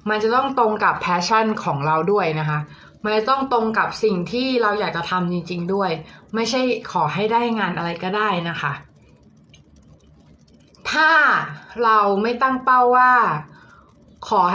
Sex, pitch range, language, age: female, 170-235 Hz, Thai, 20-39